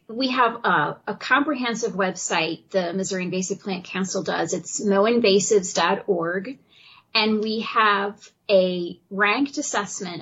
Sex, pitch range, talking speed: female, 190-225 Hz, 115 wpm